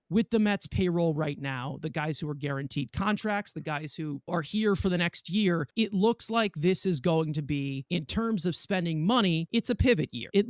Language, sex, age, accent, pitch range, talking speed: English, male, 30-49, American, 155-210 Hz, 225 wpm